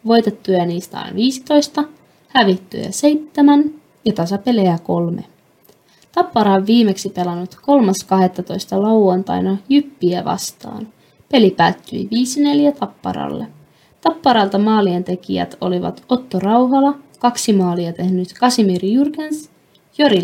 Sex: female